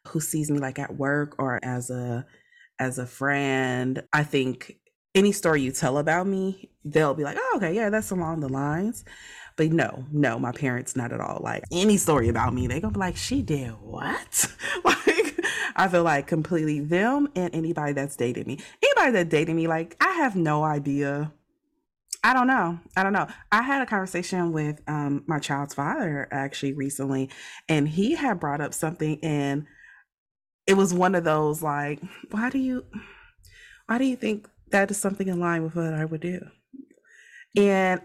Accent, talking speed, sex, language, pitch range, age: American, 190 wpm, female, English, 145-210 Hz, 30-49